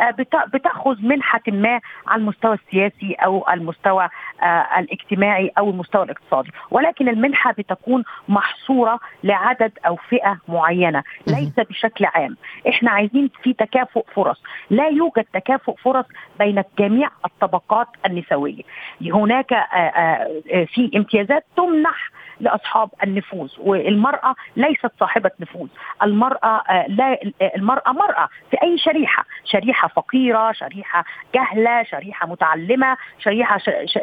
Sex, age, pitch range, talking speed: female, 40-59, 200-260 Hz, 105 wpm